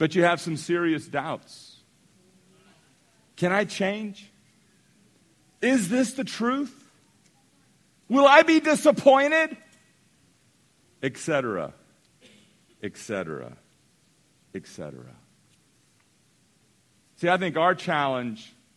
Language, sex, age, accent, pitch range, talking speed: English, male, 50-69, American, 155-255 Hz, 80 wpm